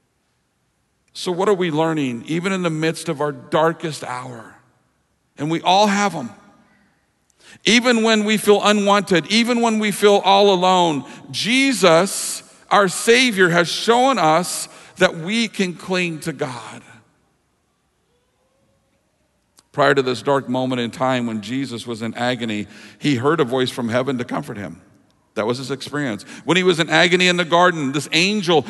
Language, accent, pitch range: English, American, 140-195 Hz